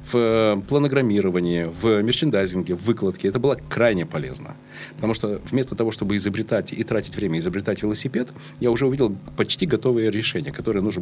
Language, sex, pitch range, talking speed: Russian, male, 95-130 Hz, 160 wpm